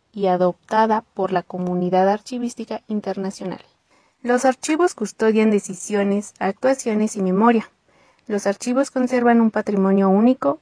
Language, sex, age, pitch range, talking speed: Spanish, female, 30-49, 195-240 Hz, 115 wpm